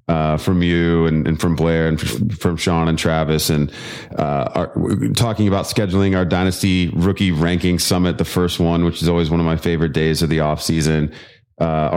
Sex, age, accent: male, 30-49, American